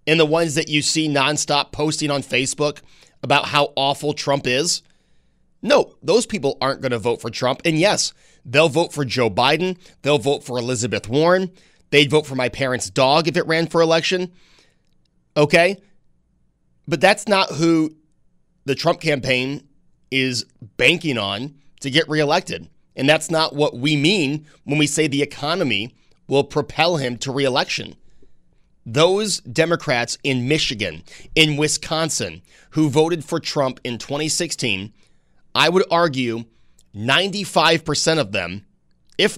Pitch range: 130-160 Hz